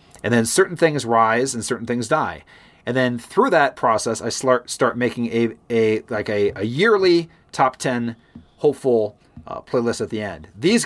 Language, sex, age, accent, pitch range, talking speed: English, male, 30-49, American, 105-145 Hz, 175 wpm